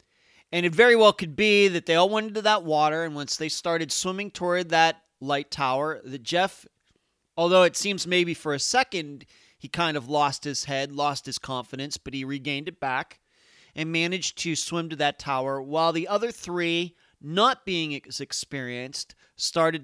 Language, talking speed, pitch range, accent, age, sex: English, 185 wpm, 135-180 Hz, American, 30-49, male